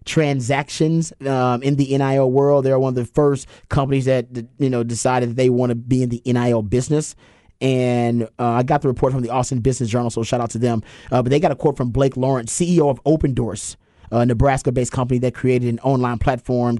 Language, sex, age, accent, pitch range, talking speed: English, male, 30-49, American, 115-140 Hz, 225 wpm